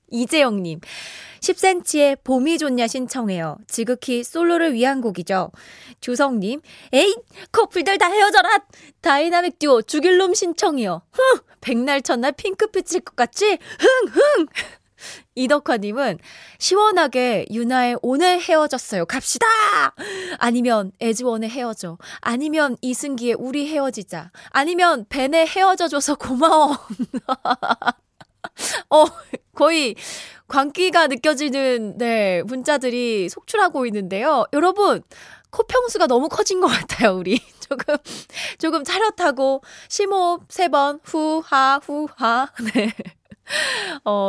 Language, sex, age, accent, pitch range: Korean, female, 20-39, native, 230-330 Hz